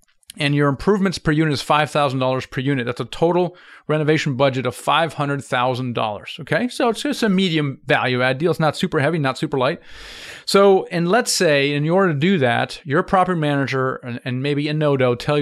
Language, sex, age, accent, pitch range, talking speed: English, male, 40-59, American, 135-170 Hz, 195 wpm